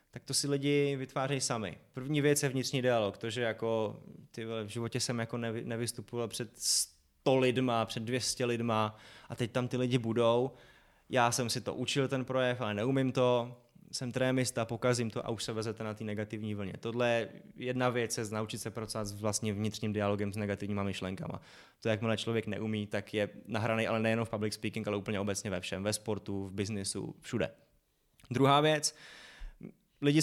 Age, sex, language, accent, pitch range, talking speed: 20-39, male, Czech, native, 110-125 Hz, 185 wpm